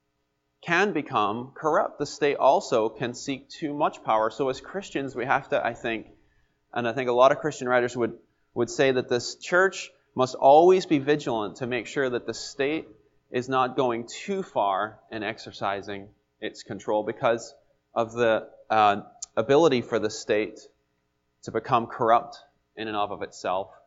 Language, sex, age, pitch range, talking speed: English, male, 30-49, 115-145 Hz, 170 wpm